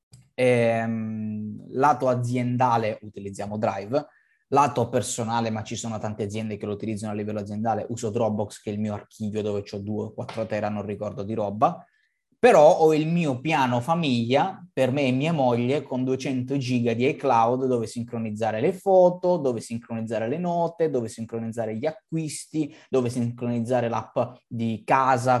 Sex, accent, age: male, native, 20-39